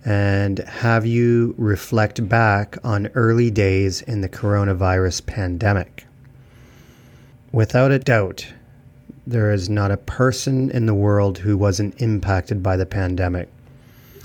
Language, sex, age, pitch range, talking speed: English, male, 30-49, 100-125 Hz, 120 wpm